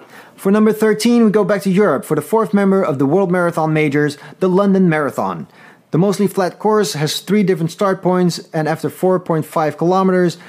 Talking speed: 190 wpm